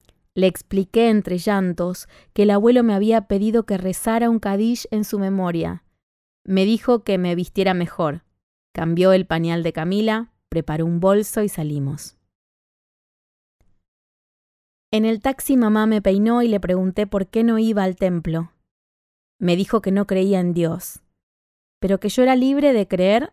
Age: 20-39